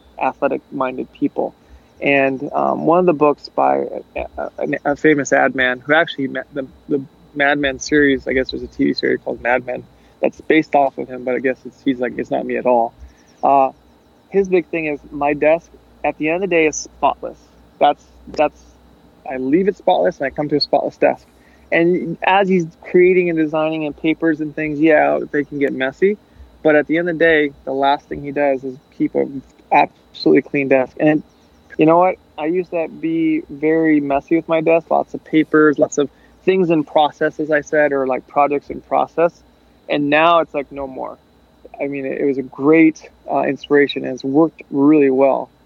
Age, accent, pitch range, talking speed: 20-39, American, 135-160 Hz, 205 wpm